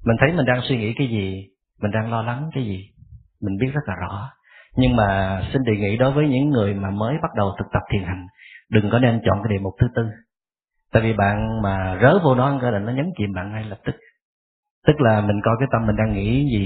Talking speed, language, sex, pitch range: 260 wpm, Vietnamese, male, 100-125 Hz